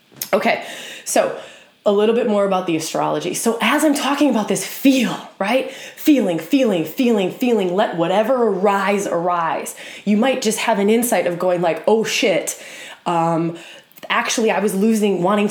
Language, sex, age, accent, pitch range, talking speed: English, female, 20-39, American, 195-275 Hz, 165 wpm